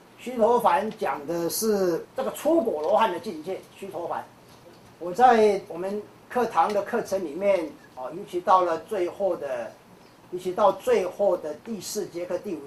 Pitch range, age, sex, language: 190-280 Hz, 40-59, male, Chinese